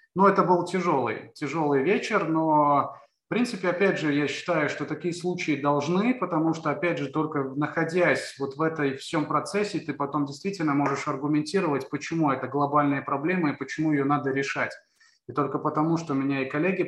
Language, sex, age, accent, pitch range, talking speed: Russian, male, 20-39, native, 135-160 Hz, 175 wpm